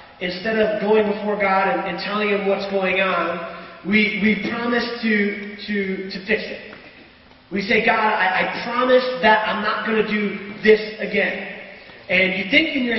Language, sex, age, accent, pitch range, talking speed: English, male, 30-49, American, 195-255 Hz, 180 wpm